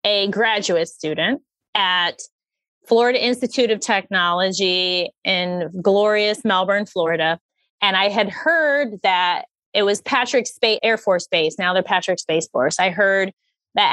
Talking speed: 140 wpm